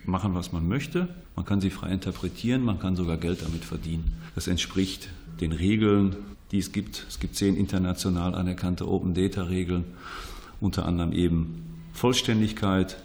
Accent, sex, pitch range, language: German, male, 85-110 Hz, German